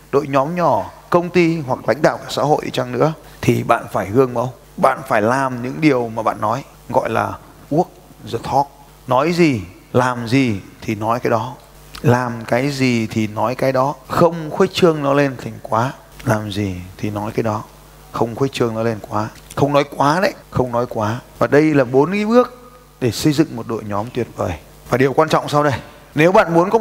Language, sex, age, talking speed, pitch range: Vietnamese, male, 20-39, 215 wpm, 120-160 Hz